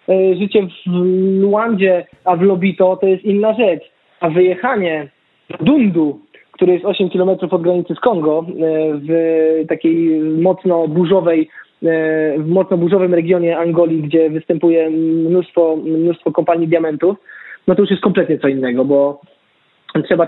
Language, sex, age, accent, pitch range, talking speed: Polish, male, 20-39, native, 160-185 Hz, 135 wpm